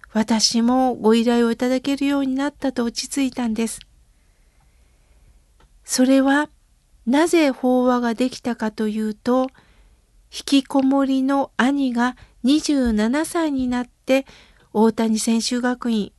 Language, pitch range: Japanese, 225-280 Hz